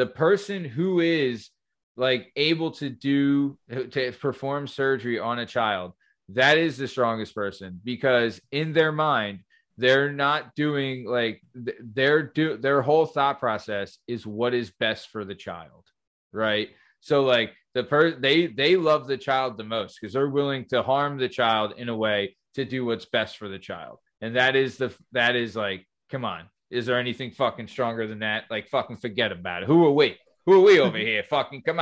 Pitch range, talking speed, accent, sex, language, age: 115-145 Hz, 190 wpm, American, male, English, 20-39